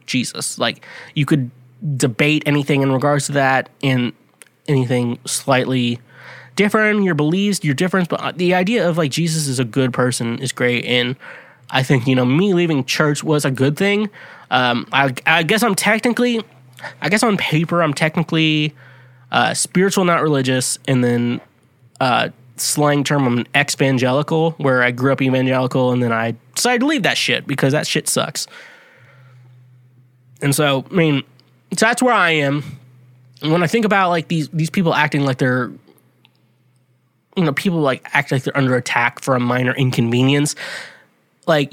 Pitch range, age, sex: 130-180 Hz, 20-39, male